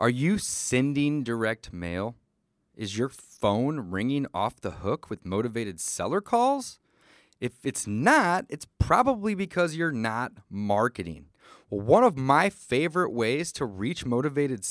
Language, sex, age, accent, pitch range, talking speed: English, male, 30-49, American, 100-145 Hz, 140 wpm